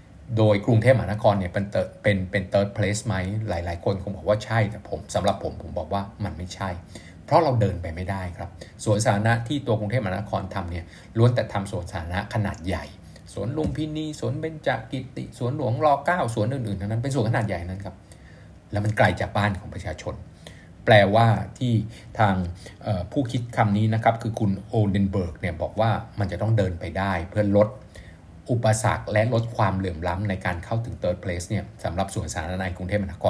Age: 60-79